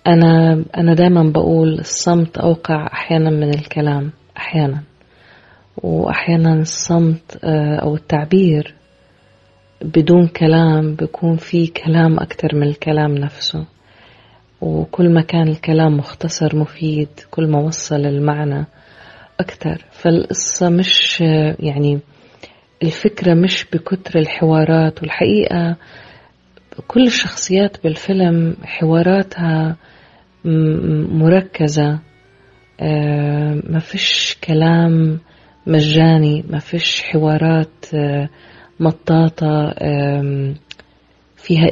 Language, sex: Arabic, female